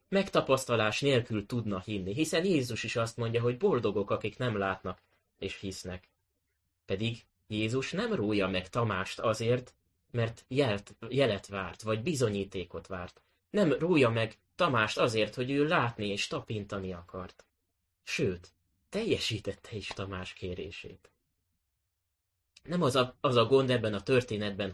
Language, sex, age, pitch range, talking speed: Hungarian, male, 20-39, 95-130 Hz, 135 wpm